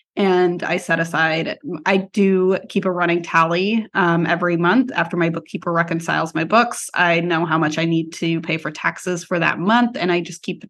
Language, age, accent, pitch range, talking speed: English, 20-39, American, 170-210 Hz, 210 wpm